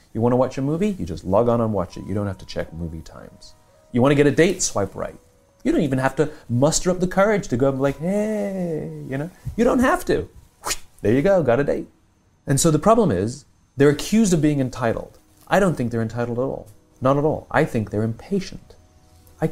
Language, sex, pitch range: English, male, 100-150 Hz